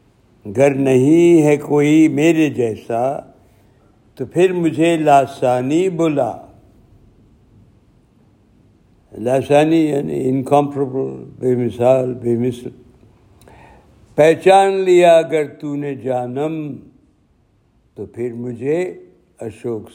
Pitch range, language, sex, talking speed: 115-150 Hz, Urdu, male, 85 wpm